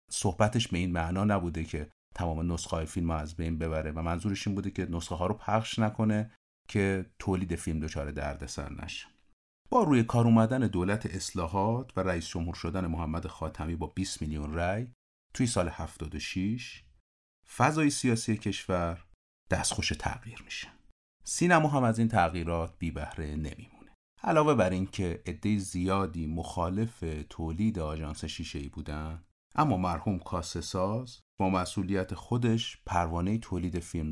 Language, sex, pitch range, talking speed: Persian, male, 80-110 Hz, 145 wpm